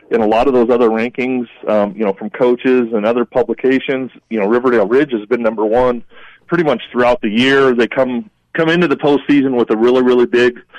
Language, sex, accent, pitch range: English, male, American, 110-130 Hz